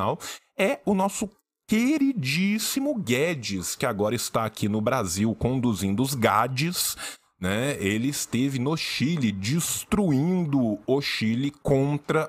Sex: male